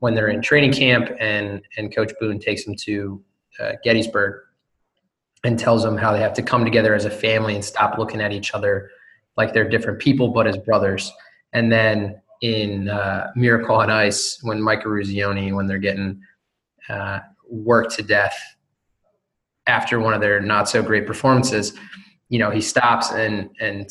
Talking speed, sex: 175 wpm, male